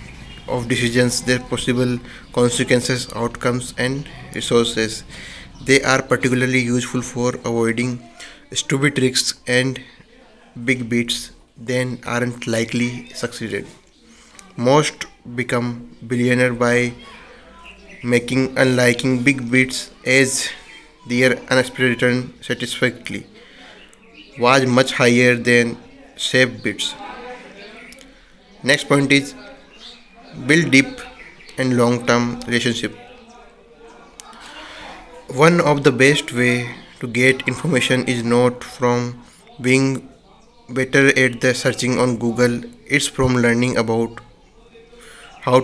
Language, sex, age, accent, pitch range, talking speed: Hindi, male, 20-39, native, 120-135 Hz, 100 wpm